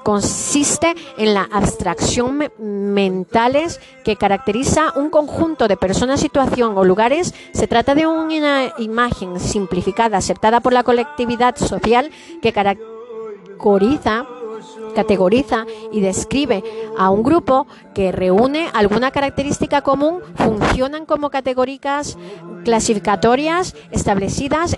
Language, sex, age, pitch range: Spanish, female, 30-49, 190-255 Hz